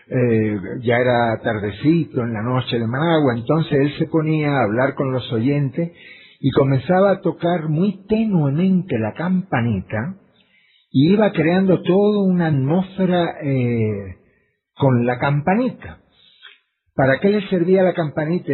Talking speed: 135 wpm